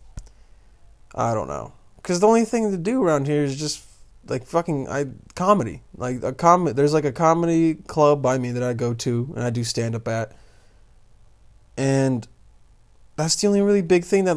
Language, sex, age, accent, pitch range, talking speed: English, male, 20-39, American, 115-155 Hz, 185 wpm